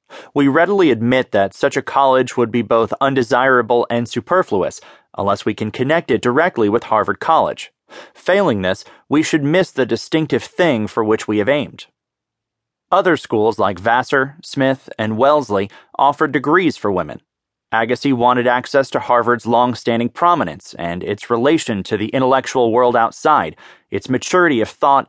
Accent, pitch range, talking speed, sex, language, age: American, 110-140 Hz, 155 wpm, male, English, 30-49